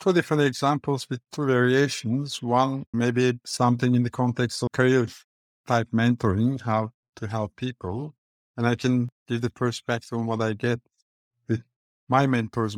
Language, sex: English, male